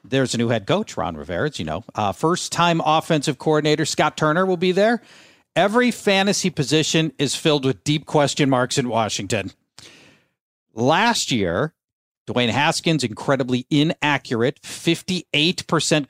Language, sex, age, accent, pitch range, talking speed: English, male, 40-59, American, 125-165 Hz, 140 wpm